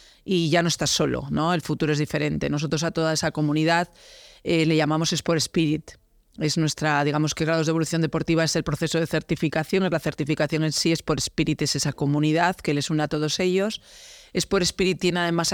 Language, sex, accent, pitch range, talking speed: Spanish, female, Spanish, 155-175 Hz, 210 wpm